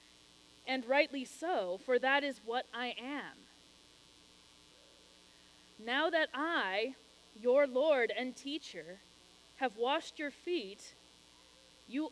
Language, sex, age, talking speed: English, female, 20-39, 105 wpm